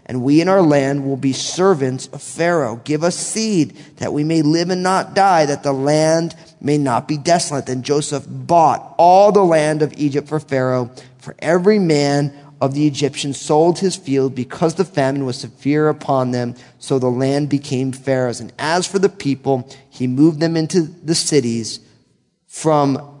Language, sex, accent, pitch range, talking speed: English, male, American, 130-165 Hz, 180 wpm